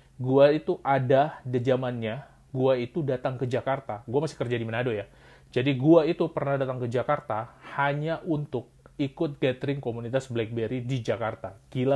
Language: Indonesian